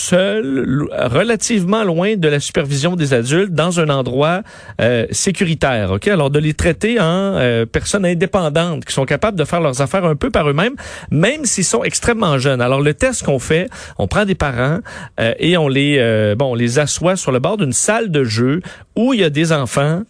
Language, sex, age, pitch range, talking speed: French, male, 40-59, 140-190 Hz, 205 wpm